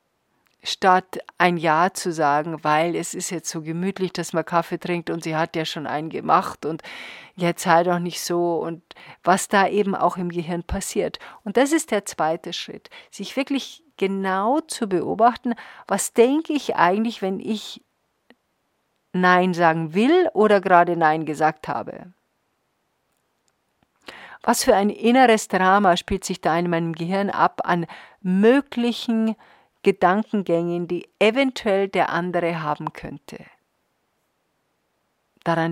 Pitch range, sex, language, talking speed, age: 170-205 Hz, female, German, 140 wpm, 50-69